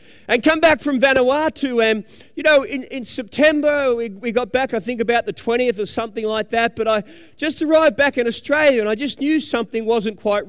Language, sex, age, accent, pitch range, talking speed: English, male, 40-59, Australian, 190-250 Hz, 215 wpm